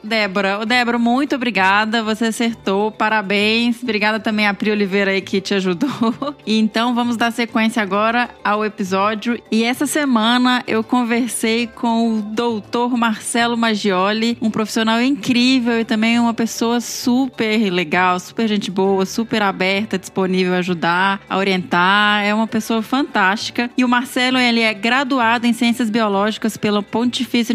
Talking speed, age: 145 wpm, 20-39